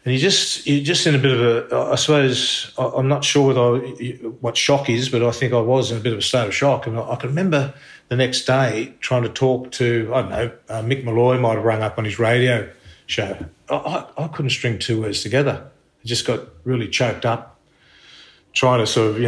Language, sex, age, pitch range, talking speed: English, male, 40-59, 115-130 Hz, 230 wpm